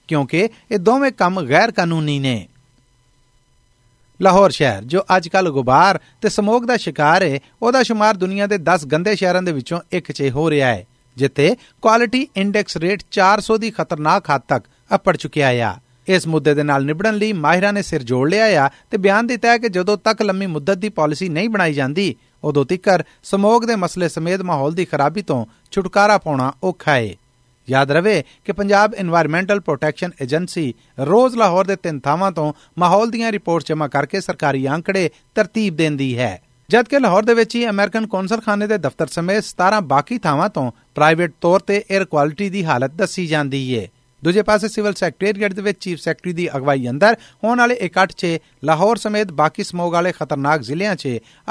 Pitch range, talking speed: 145-205 Hz, 110 wpm